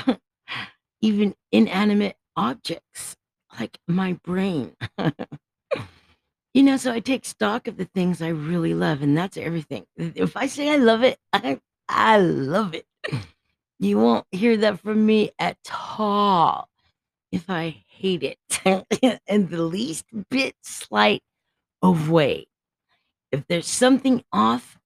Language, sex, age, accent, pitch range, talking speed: English, female, 50-69, American, 155-215 Hz, 130 wpm